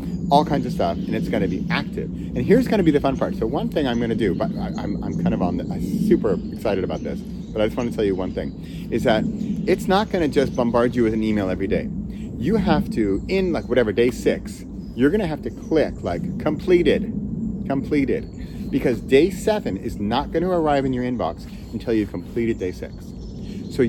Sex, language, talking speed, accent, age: male, English, 225 wpm, American, 30-49